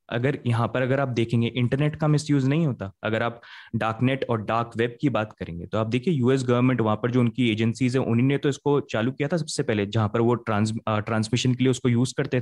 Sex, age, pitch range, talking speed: male, 20-39, 115-150 Hz, 225 wpm